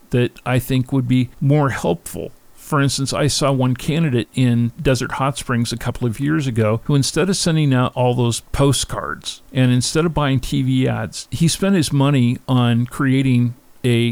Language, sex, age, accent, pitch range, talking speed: English, male, 50-69, American, 120-140 Hz, 185 wpm